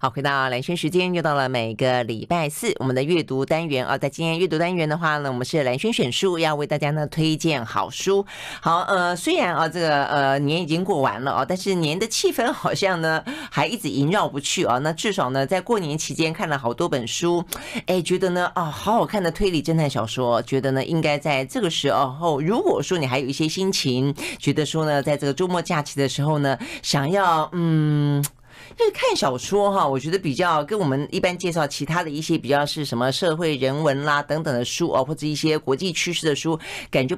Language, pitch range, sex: Chinese, 135-175 Hz, female